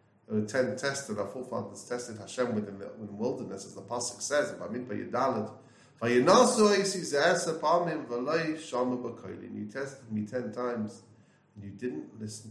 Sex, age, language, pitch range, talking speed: male, 30-49, English, 110-150 Hz, 130 wpm